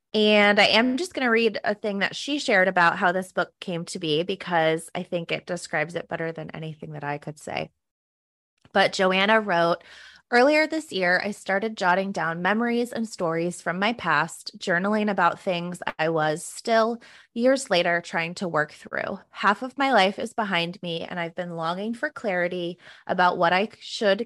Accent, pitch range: American, 170-215 Hz